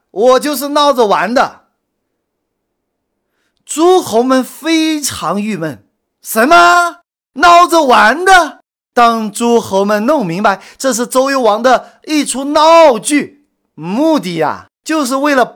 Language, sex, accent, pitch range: Chinese, male, native, 220-295 Hz